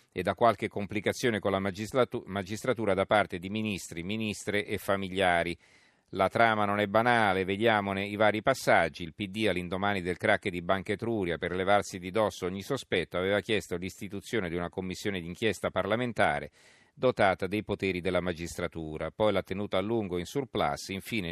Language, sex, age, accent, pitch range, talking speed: Italian, male, 40-59, native, 90-110 Hz, 165 wpm